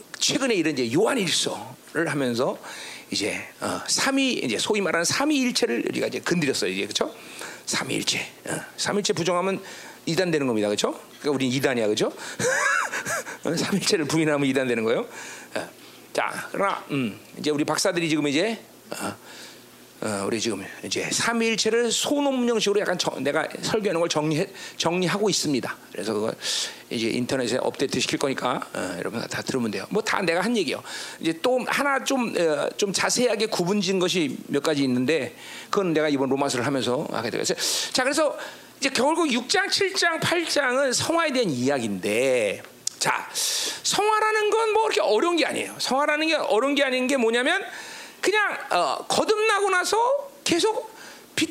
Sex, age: male, 40-59